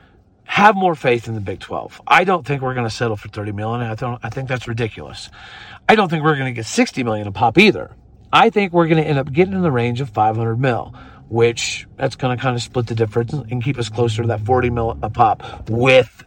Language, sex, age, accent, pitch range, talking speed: English, male, 40-59, American, 115-165 Hz, 260 wpm